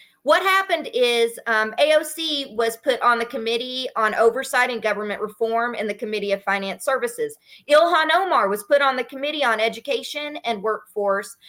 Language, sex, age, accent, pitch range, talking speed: English, female, 40-59, American, 225-310 Hz, 165 wpm